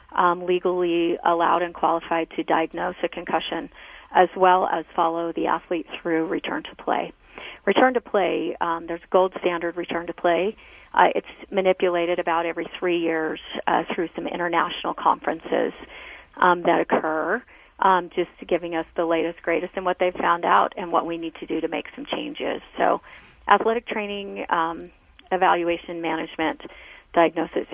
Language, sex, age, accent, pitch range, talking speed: English, female, 40-59, American, 165-190 Hz, 160 wpm